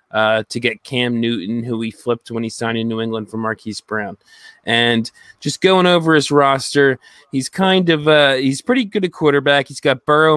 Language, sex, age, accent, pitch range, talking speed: English, male, 20-39, American, 115-135 Hz, 210 wpm